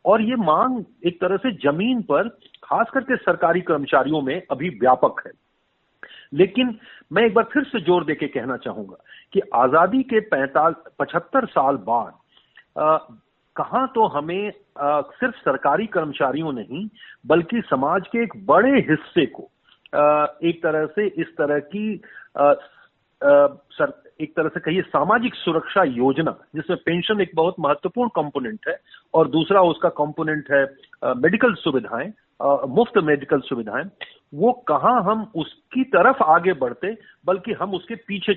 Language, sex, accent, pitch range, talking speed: Hindi, male, native, 155-220 Hz, 140 wpm